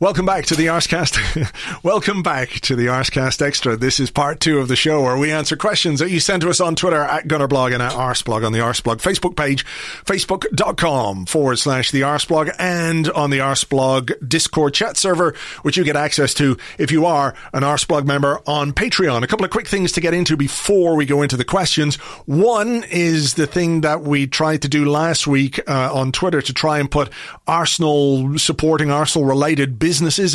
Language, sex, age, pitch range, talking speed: English, male, 40-59, 130-165 Hz, 200 wpm